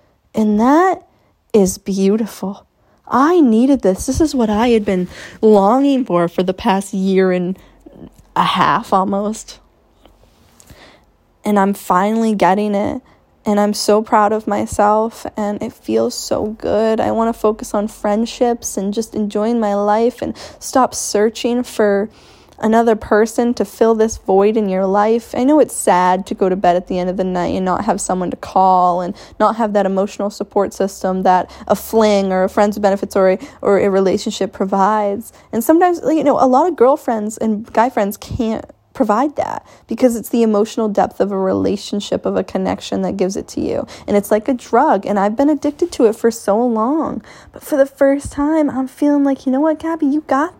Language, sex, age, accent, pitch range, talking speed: English, female, 10-29, American, 195-245 Hz, 190 wpm